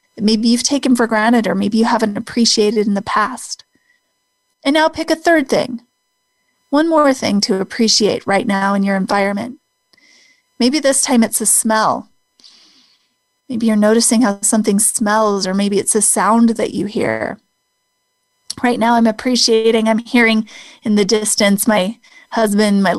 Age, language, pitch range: 30-49, English, 205-235 Hz